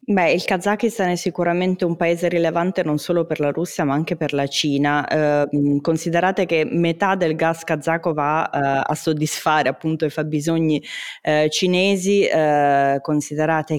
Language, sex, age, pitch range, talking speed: Italian, female, 20-39, 145-165 Hz, 155 wpm